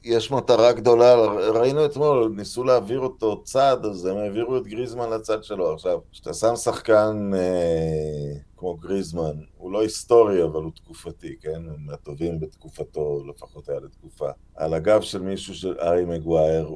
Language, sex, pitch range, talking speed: Hebrew, male, 90-125 Hz, 160 wpm